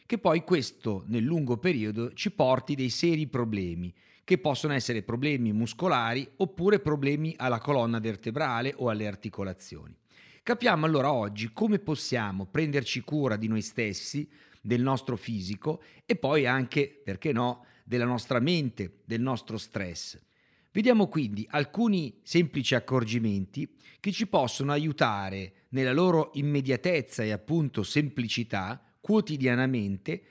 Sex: male